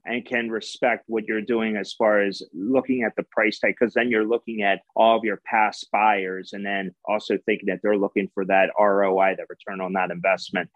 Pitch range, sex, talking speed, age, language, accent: 100-125 Hz, male, 220 wpm, 30-49, English, American